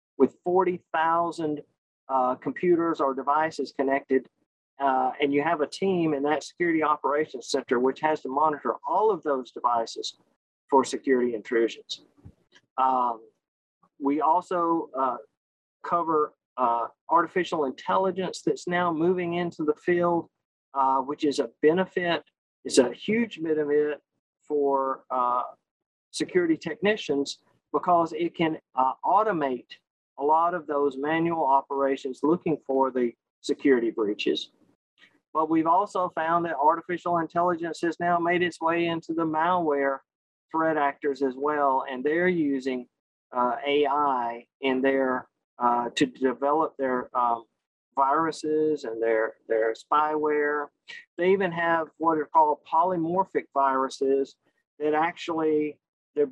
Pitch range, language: 135-170 Hz, English